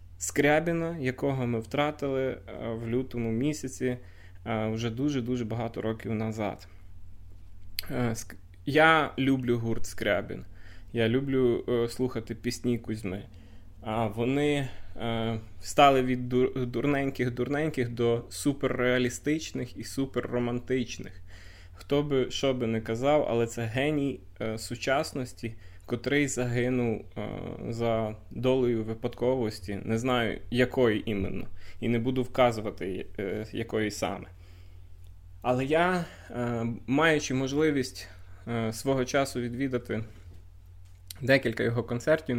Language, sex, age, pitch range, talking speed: Ukrainian, male, 20-39, 95-130 Hz, 100 wpm